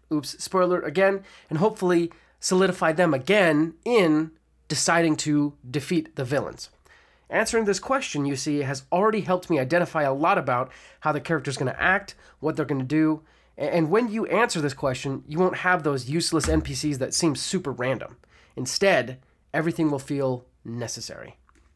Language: English